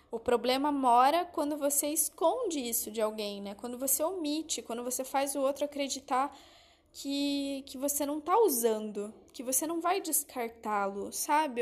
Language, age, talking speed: Portuguese, 10-29, 160 wpm